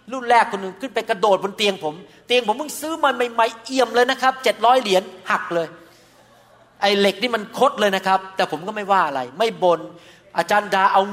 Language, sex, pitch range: Thai, male, 175-225 Hz